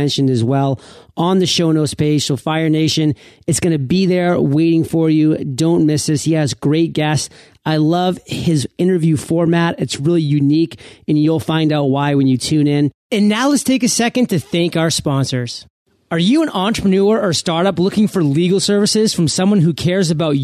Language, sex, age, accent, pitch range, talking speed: English, male, 30-49, American, 155-210 Hz, 200 wpm